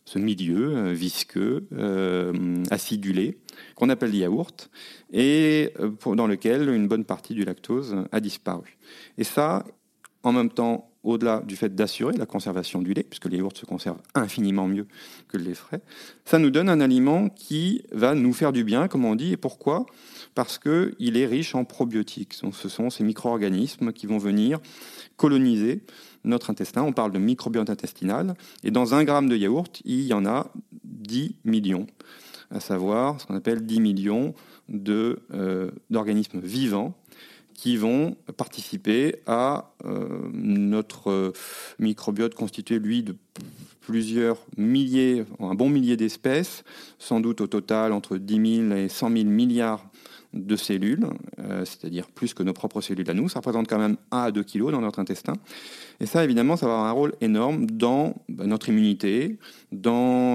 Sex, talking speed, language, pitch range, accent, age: male, 165 wpm, French, 100-130 Hz, French, 40-59